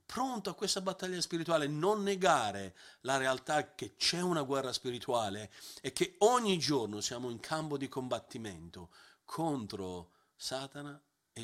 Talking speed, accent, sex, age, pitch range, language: 135 wpm, native, male, 40-59, 130-180 Hz, Italian